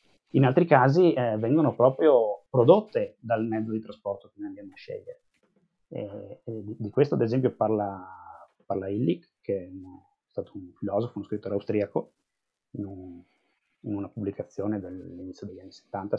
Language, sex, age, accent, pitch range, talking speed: Italian, male, 30-49, native, 105-140 Hz, 155 wpm